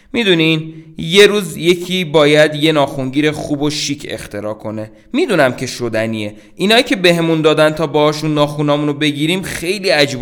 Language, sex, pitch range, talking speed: Persian, male, 115-155 Hz, 145 wpm